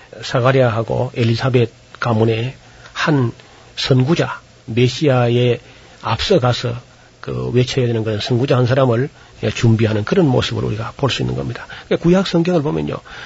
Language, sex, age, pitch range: Korean, male, 40-59, 120-160 Hz